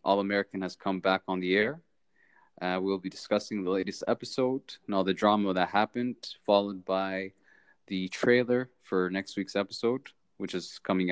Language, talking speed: English, 165 wpm